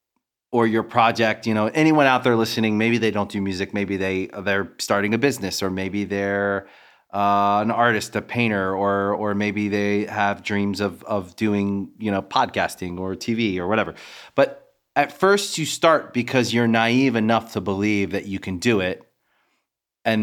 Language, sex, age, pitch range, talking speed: English, male, 30-49, 100-120 Hz, 180 wpm